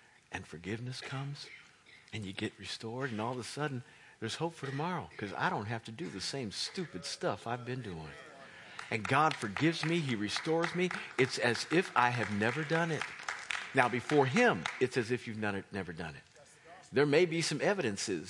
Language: English